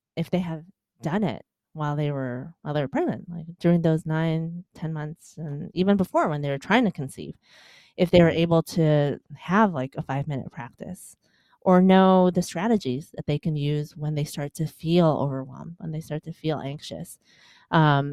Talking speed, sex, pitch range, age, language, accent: 190 wpm, female, 150-180 Hz, 30-49, English, American